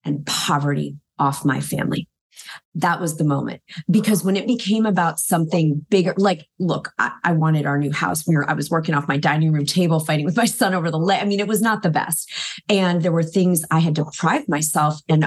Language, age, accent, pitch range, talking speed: English, 30-49, American, 150-180 Hz, 215 wpm